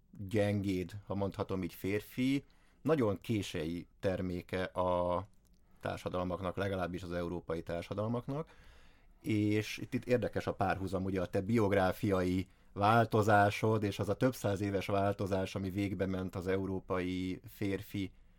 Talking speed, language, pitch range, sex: 125 wpm, Hungarian, 95-105 Hz, male